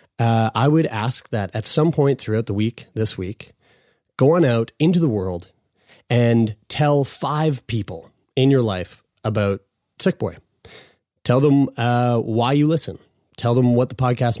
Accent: American